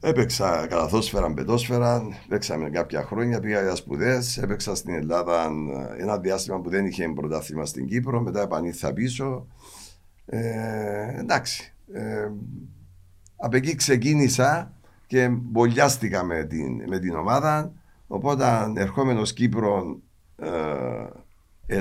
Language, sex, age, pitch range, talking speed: Greek, male, 60-79, 85-120 Hz, 105 wpm